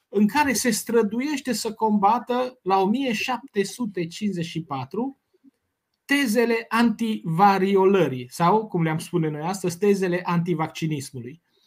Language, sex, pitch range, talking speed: Romanian, male, 165-230 Hz, 95 wpm